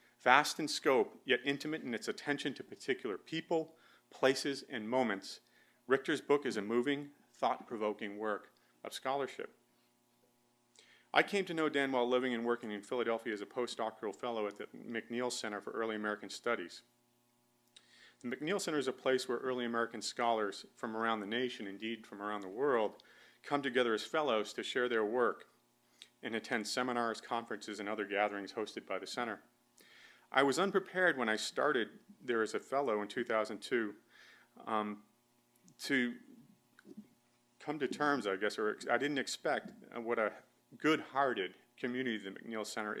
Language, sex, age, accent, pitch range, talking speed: English, male, 40-59, American, 110-130 Hz, 160 wpm